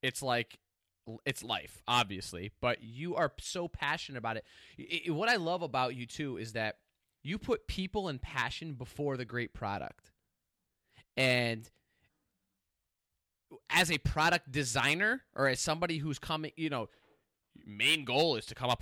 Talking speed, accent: 155 wpm, American